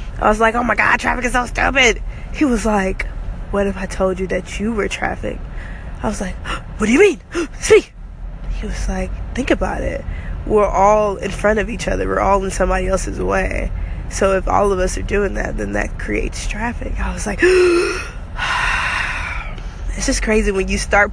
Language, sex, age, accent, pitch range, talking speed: English, female, 20-39, American, 185-270 Hz, 200 wpm